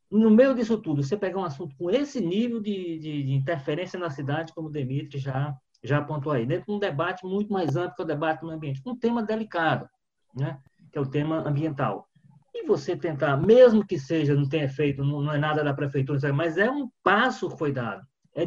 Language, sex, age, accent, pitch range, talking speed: Portuguese, male, 20-39, Brazilian, 135-185 Hz, 220 wpm